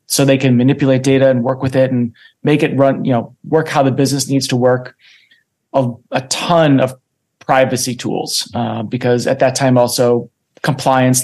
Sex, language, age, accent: male, English, 30-49, American